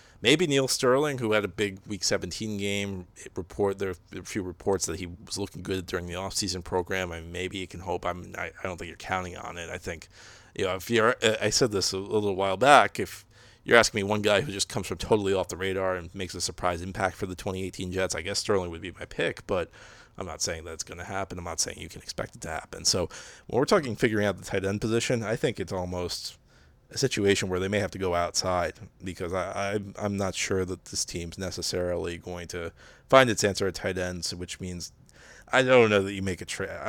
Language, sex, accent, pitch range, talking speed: English, male, American, 90-100 Hz, 245 wpm